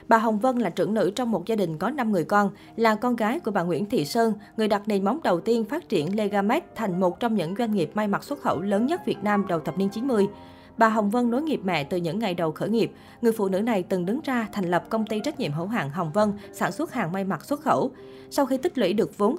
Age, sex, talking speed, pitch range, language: 20-39, female, 280 wpm, 185-230 Hz, Vietnamese